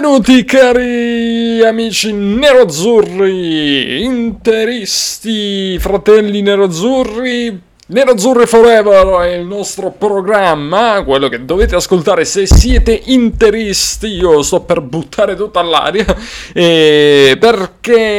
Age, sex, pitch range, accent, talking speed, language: 30-49, male, 150-220 Hz, native, 90 wpm, Italian